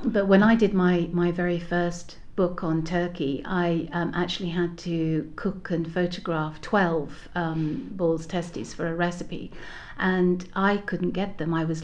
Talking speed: 165 wpm